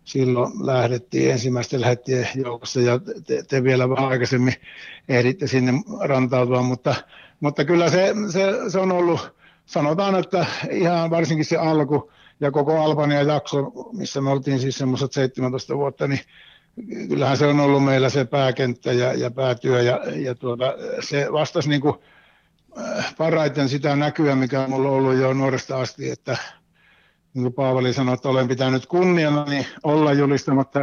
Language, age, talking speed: Finnish, 60-79, 145 wpm